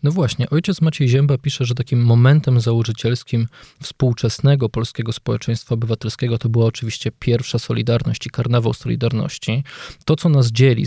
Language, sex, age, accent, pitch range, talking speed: Polish, male, 20-39, native, 115-135 Hz, 145 wpm